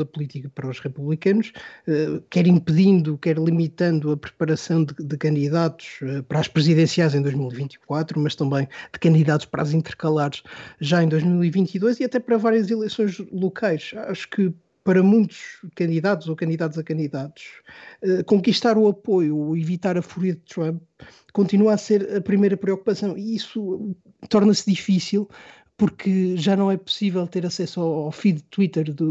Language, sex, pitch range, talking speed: Portuguese, male, 160-200 Hz, 155 wpm